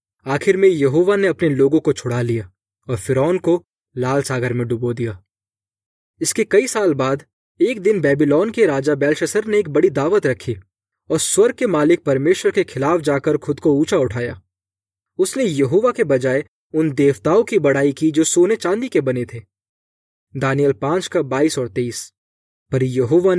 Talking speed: 170 wpm